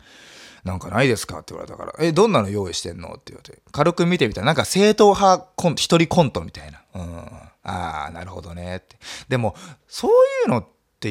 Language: Japanese